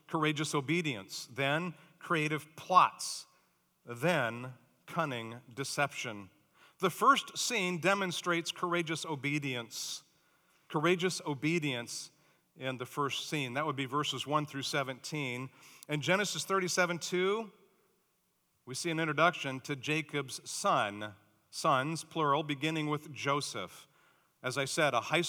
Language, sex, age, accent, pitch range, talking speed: English, male, 50-69, American, 120-160 Hz, 115 wpm